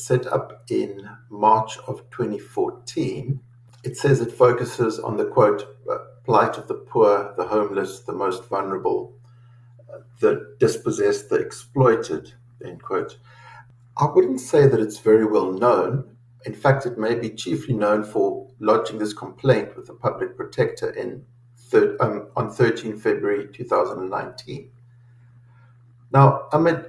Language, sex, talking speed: English, male, 130 wpm